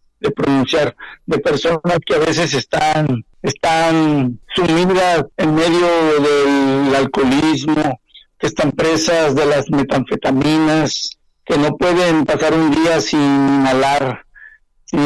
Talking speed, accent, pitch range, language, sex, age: 115 wpm, Mexican, 140-180 Hz, Spanish, male, 60-79